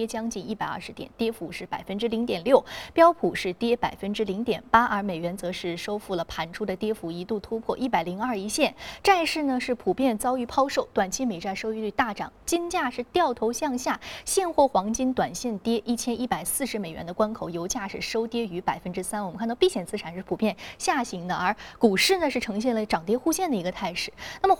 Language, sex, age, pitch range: Chinese, female, 20-39, 185-250 Hz